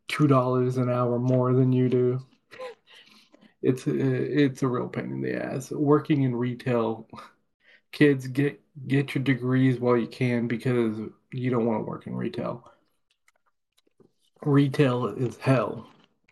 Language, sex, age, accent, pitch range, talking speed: English, male, 20-39, American, 120-135 Hz, 140 wpm